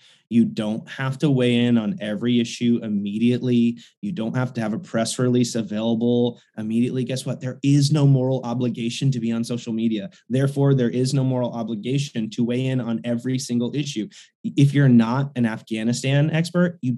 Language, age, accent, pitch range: English, 20-39, American, 115-145 Hz